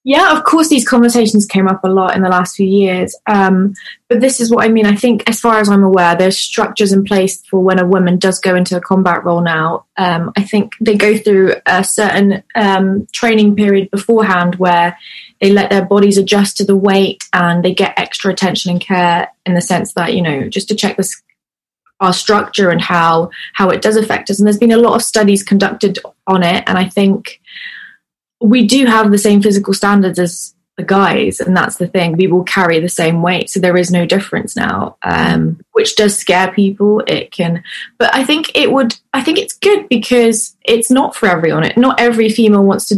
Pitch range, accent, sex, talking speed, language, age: 185-220 Hz, British, female, 215 wpm, English, 20-39